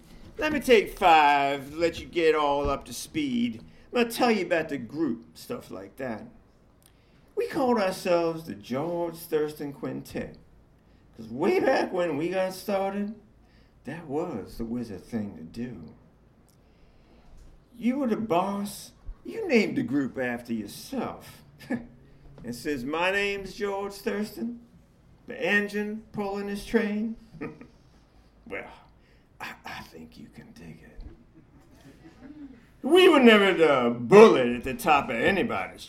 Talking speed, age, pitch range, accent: 135 wpm, 50-69, 140-230 Hz, American